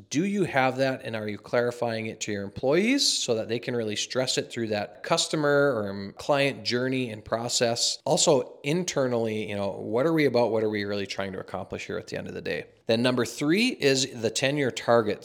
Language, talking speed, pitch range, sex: English, 220 wpm, 105-135 Hz, male